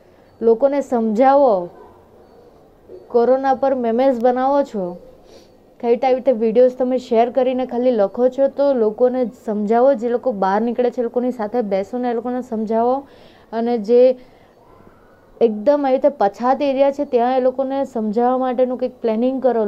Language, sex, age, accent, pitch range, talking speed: Gujarati, female, 20-39, native, 220-255 Hz, 110 wpm